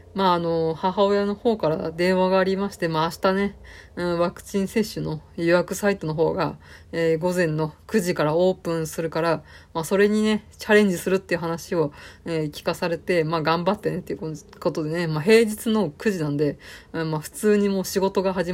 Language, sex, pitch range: Japanese, female, 160-195 Hz